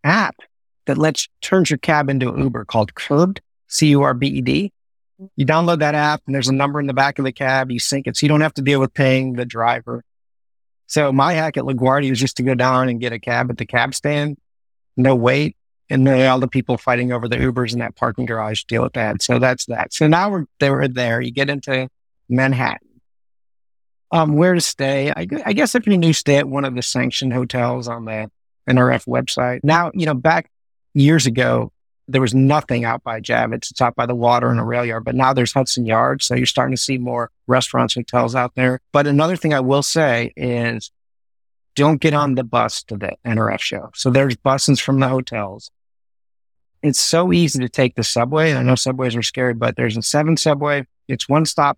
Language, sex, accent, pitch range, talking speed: English, male, American, 125-145 Hz, 220 wpm